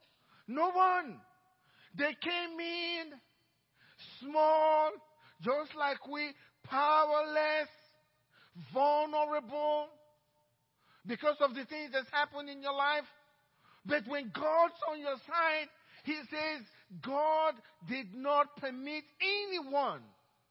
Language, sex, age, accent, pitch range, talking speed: English, male, 50-69, Nigerian, 255-330 Hz, 95 wpm